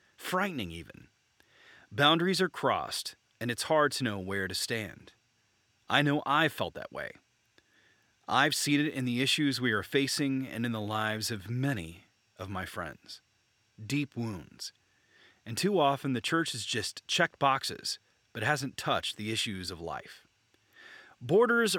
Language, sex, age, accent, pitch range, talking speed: English, male, 30-49, American, 110-145 Hz, 155 wpm